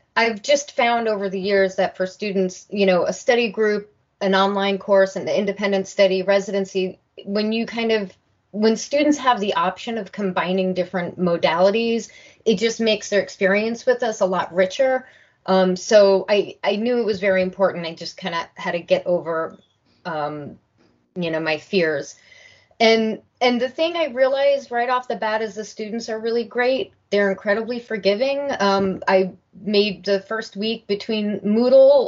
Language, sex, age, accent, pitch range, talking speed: English, female, 30-49, American, 185-230 Hz, 175 wpm